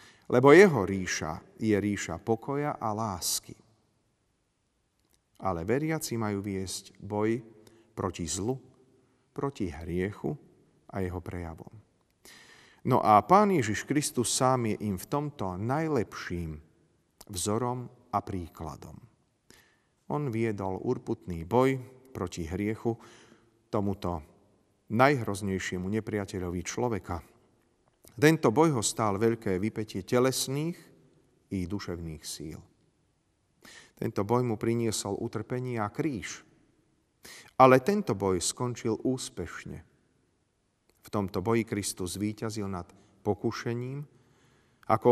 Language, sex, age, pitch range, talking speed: Slovak, male, 40-59, 95-125 Hz, 100 wpm